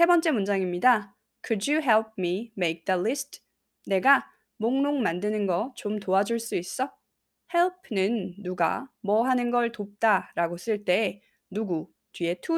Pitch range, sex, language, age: 185-250 Hz, female, Korean, 20-39